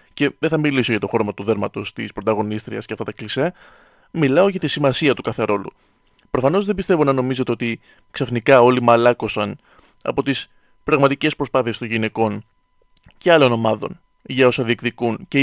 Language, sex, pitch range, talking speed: Greek, male, 120-170 Hz, 165 wpm